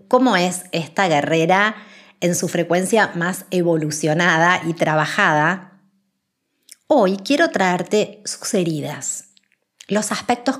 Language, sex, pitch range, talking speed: Spanish, female, 170-220 Hz, 100 wpm